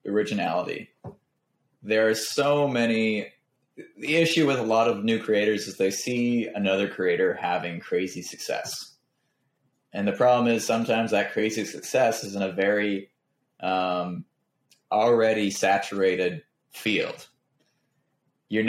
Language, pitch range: English, 100-120 Hz